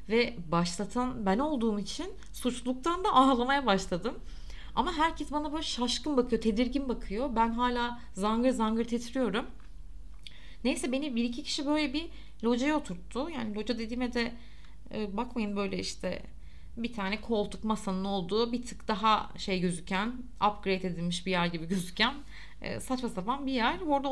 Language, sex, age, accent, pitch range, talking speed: Turkish, female, 30-49, native, 195-255 Hz, 145 wpm